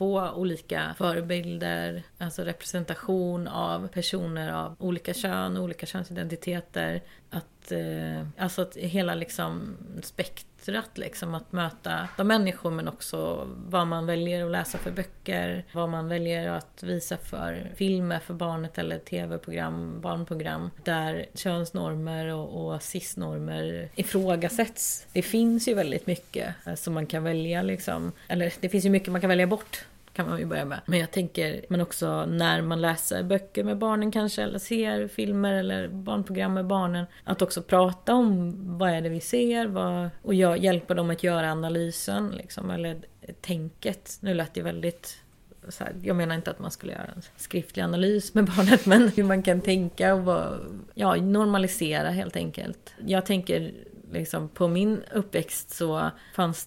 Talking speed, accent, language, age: 160 wpm, native, Swedish, 30-49